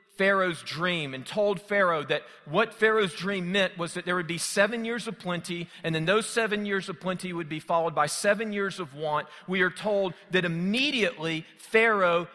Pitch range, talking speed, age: 175-220 Hz, 195 wpm, 40-59